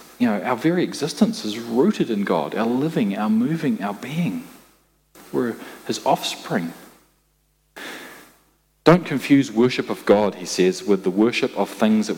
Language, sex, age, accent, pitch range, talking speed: English, male, 40-59, Australian, 105-140 Hz, 155 wpm